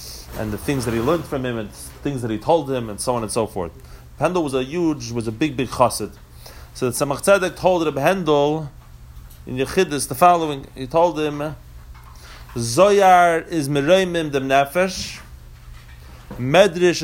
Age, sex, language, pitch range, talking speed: 30-49, male, English, 105-155 Hz, 175 wpm